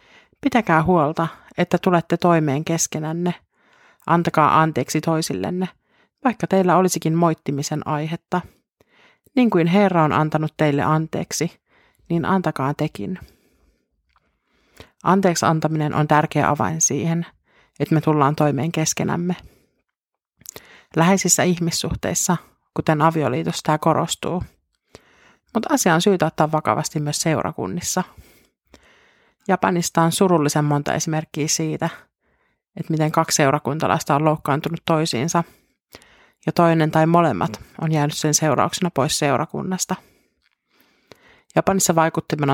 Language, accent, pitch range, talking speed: Finnish, native, 150-170 Hz, 105 wpm